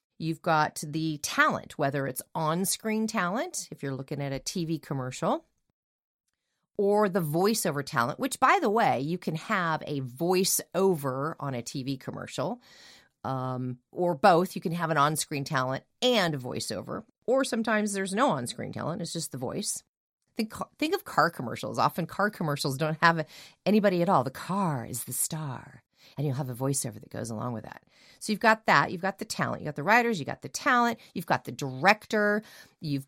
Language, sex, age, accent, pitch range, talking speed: English, female, 40-59, American, 145-220 Hz, 185 wpm